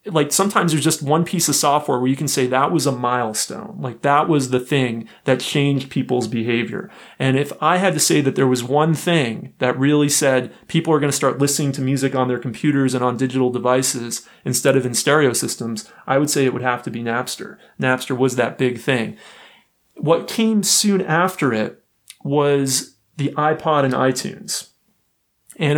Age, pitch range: 30-49, 125-150 Hz